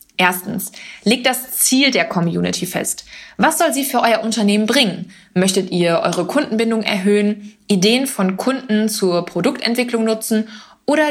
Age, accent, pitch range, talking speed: 20-39, German, 185-245 Hz, 140 wpm